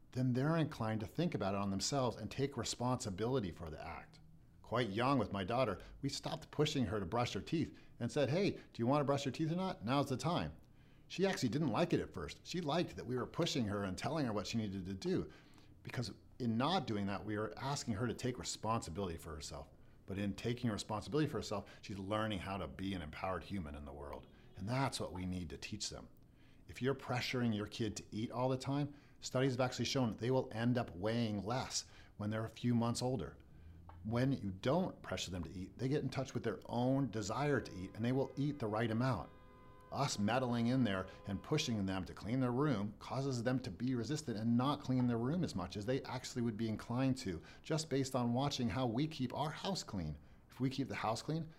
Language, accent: English, American